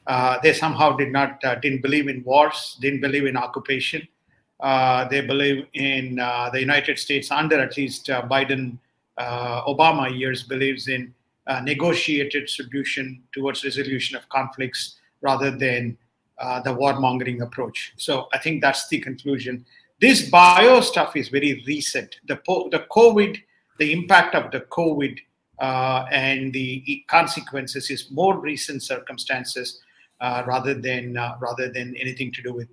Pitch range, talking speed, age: 130-150 Hz, 150 wpm, 50-69